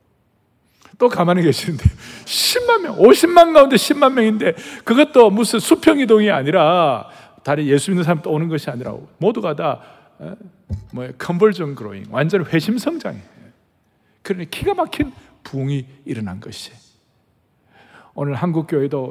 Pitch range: 135-215 Hz